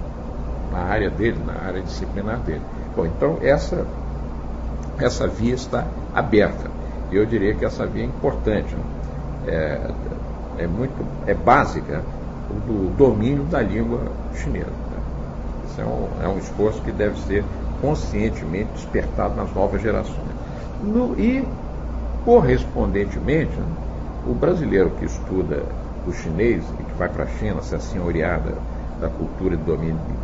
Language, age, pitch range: Chinese, 60-79, 75-115 Hz